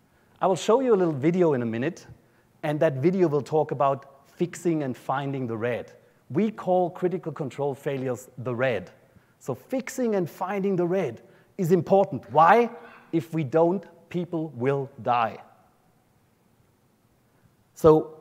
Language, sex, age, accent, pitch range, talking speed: English, male, 30-49, German, 135-180 Hz, 145 wpm